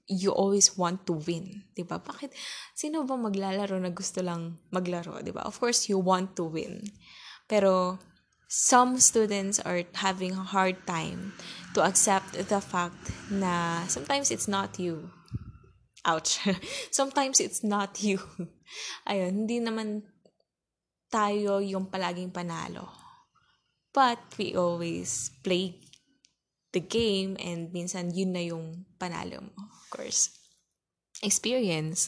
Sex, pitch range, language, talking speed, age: female, 175-210 Hz, Filipino, 125 wpm, 10-29